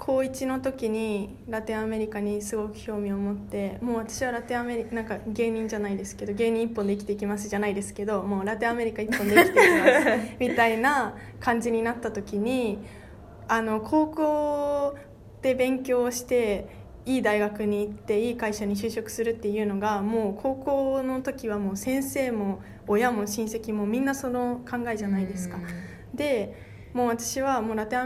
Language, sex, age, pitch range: Japanese, female, 20-39, 205-245 Hz